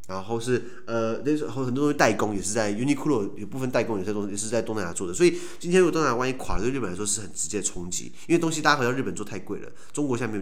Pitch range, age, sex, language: 100-125 Hz, 30-49, male, Chinese